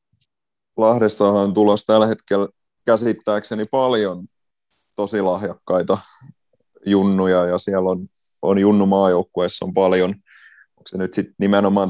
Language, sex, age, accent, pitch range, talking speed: Finnish, male, 30-49, native, 95-105 Hz, 110 wpm